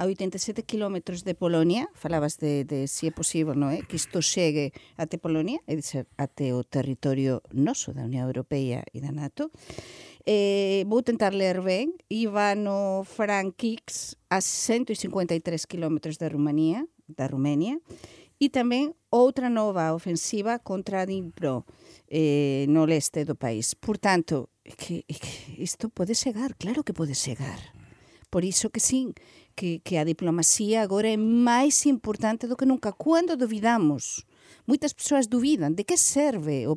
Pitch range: 155-230 Hz